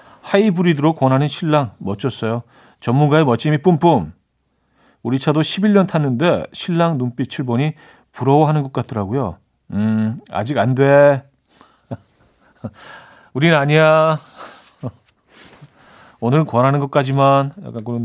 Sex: male